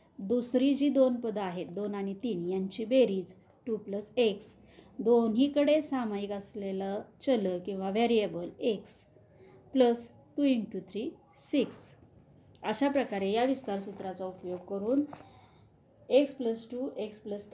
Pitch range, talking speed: 200-260 Hz, 110 wpm